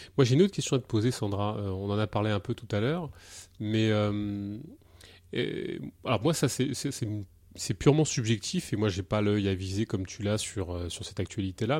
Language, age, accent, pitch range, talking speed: French, 30-49, French, 100-130 Hz, 225 wpm